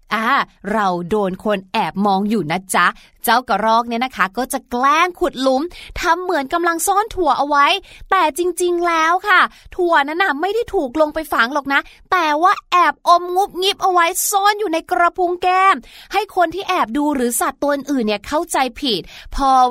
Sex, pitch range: female, 235-340 Hz